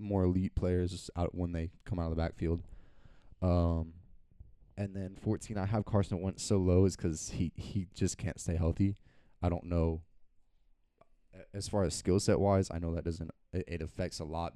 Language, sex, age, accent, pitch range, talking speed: English, male, 20-39, American, 80-95 Hz, 190 wpm